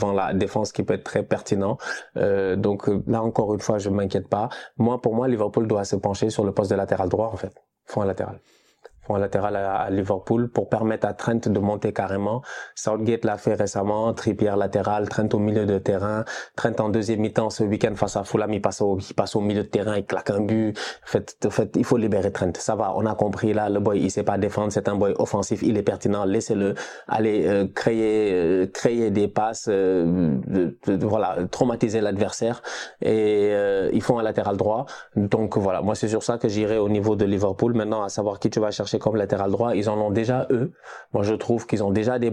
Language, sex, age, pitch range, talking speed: French, male, 20-39, 105-125 Hz, 215 wpm